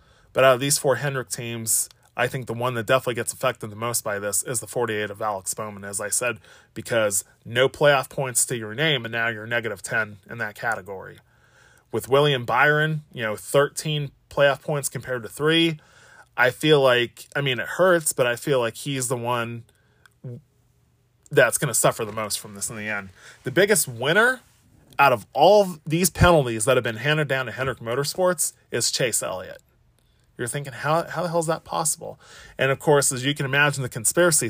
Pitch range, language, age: 120-145 Hz, English, 20-39